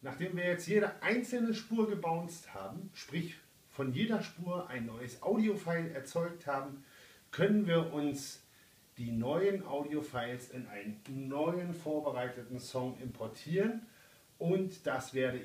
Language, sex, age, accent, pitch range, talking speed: German, male, 40-59, German, 125-175 Hz, 125 wpm